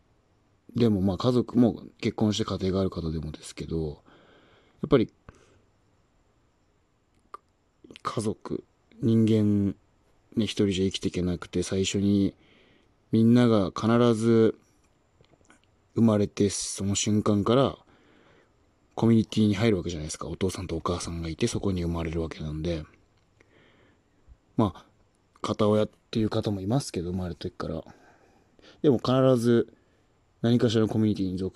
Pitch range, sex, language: 95-115 Hz, male, Japanese